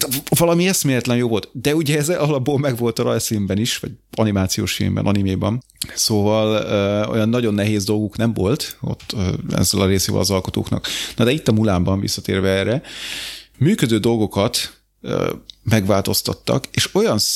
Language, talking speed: Hungarian, 140 wpm